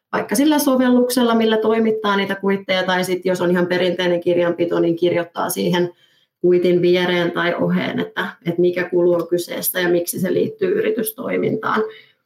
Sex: female